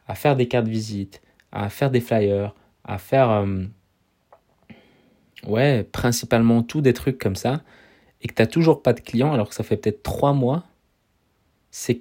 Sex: male